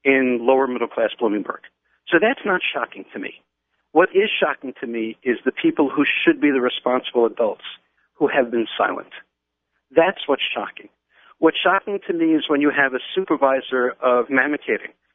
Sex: male